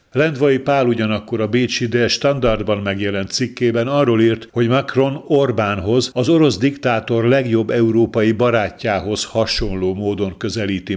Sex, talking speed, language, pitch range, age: male, 125 wpm, Hungarian, 105-125 Hz, 50-69